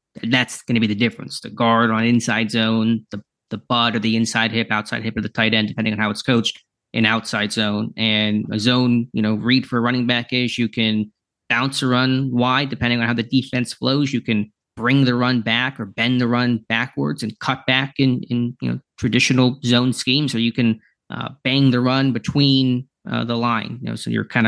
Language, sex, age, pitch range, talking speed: English, male, 20-39, 110-125 Hz, 225 wpm